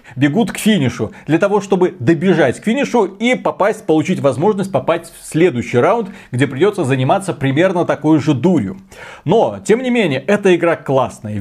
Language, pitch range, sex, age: Russian, 140-185 Hz, male, 30-49